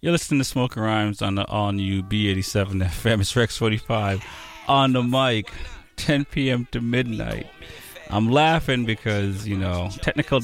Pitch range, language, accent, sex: 100-125 Hz, English, American, male